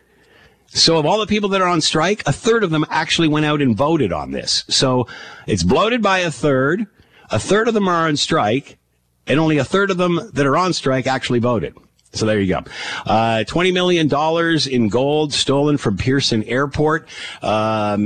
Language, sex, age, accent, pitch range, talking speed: English, male, 50-69, American, 100-160 Hz, 195 wpm